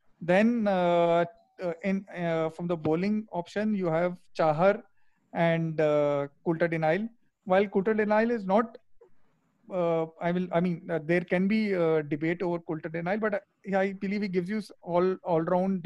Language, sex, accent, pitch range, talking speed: English, male, Indian, 165-200 Hz, 165 wpm